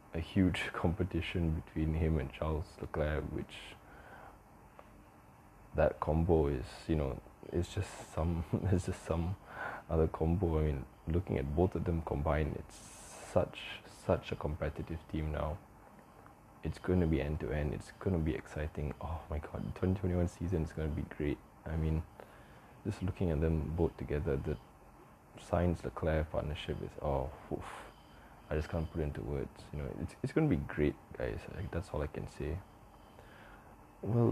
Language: English